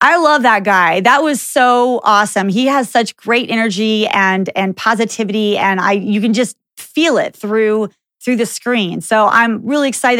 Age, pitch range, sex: 30-49, 195-235 Hz, female